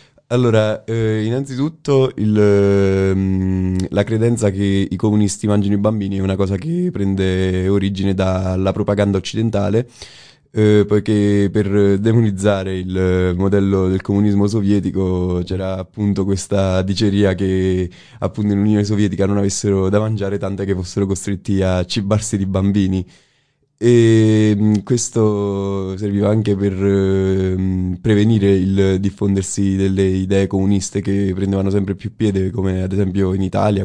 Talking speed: 130 wpm